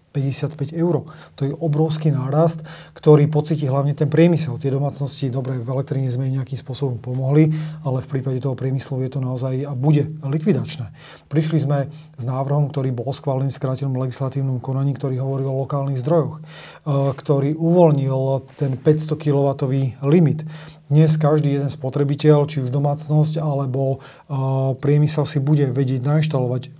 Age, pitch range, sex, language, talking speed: 30-49, 135-150 Hz, male, Slovak, 145 wpm